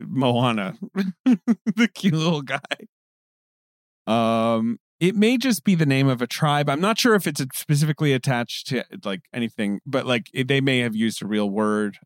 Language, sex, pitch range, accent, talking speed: English, male, 110-155 Hz, American, 175 wpm